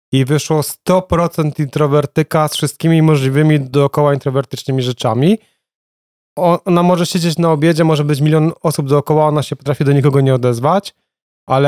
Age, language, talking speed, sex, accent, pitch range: 30-49, Polish, 145 wpm, male, native, 140-160 Hz